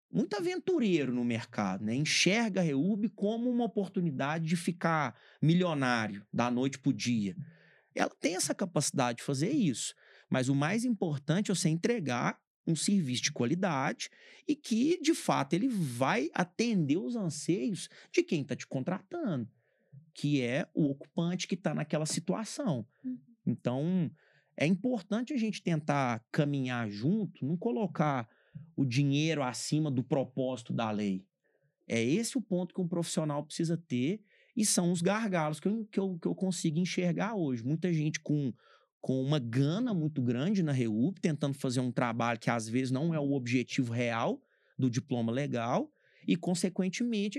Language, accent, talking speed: Portuguese, Brazilian, 160 wpm